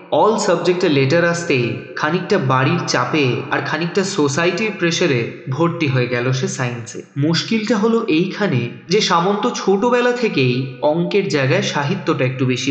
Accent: native